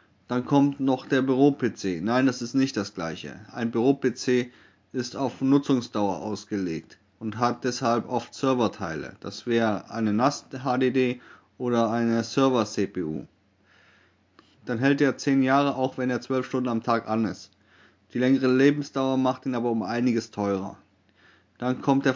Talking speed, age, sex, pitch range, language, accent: 150 wpm, 30-49, male, 110-135 Hz, German, German